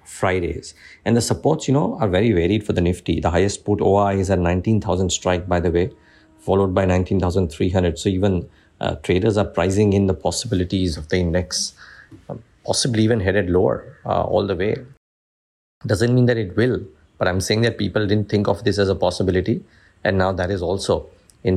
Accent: Indian